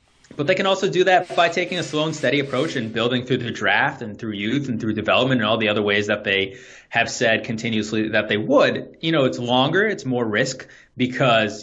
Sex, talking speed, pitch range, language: male, 230 wpm, 110-145 Hz, English